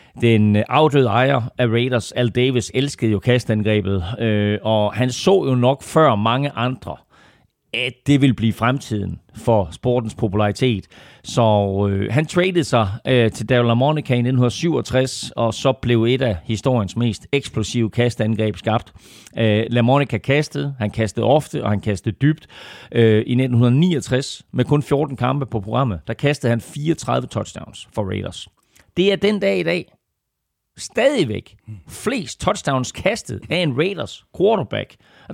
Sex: male